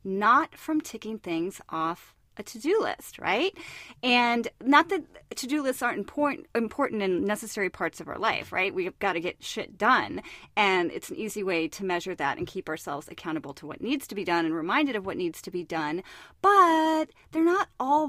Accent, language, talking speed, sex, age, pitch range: American, English, 200 wpm, female, 30-49, 185-280 Hz